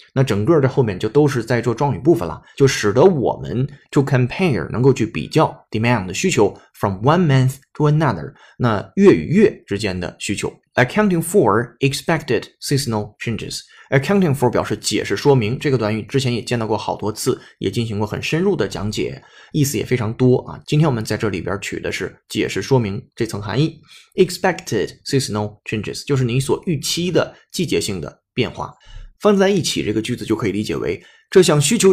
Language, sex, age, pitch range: Chinese, male, 20-39, 110-145 Hz